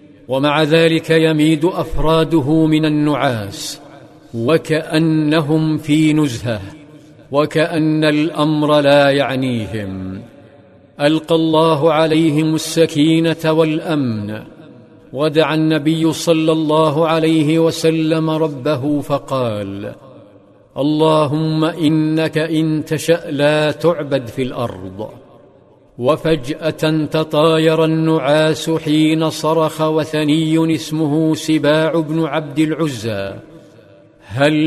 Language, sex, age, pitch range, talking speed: Arabic, male, 50-69, 145-160 Hz, 80 wpm